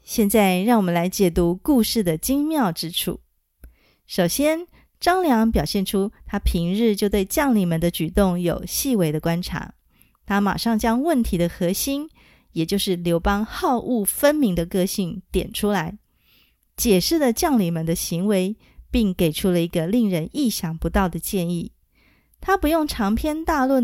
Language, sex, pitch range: Chinese, female, 175-235 Hz